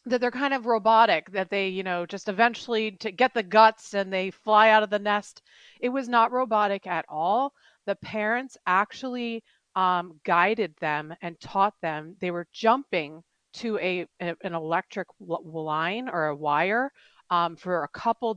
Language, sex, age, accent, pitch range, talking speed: English, female, 40-59, American, 180-230 Hz, 175 wpm